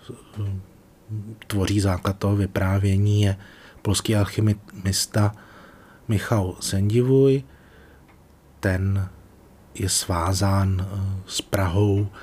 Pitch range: 95-110 Hz